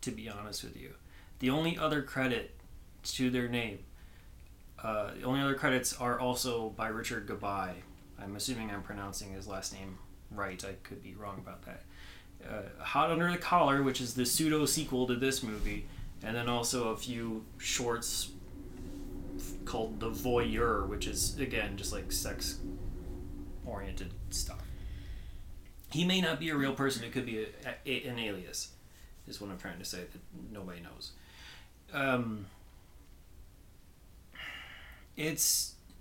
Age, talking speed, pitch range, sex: 30-49, 150 wpm, 95-130 Hz, male